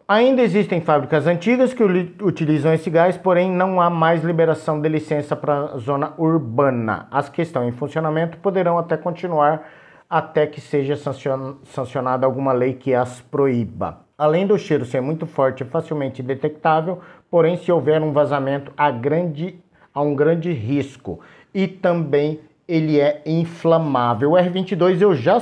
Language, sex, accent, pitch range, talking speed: Portuguese, male, Brazilian, 140-175 Hz, 150 wpm